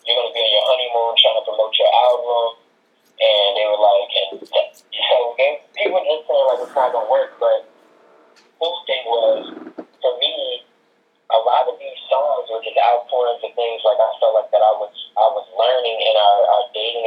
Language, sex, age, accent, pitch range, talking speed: English, male, 20-39, American, 110-130 Hz, 220 wpm